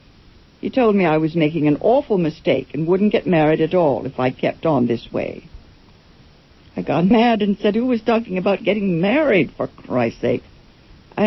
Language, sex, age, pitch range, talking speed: English, female, 60-79, 135-180 Hz, 190 wpm